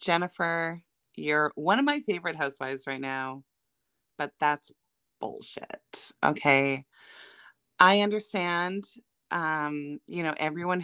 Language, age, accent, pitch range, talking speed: English, 30-49, American, 150-220 Hz, 105 wpm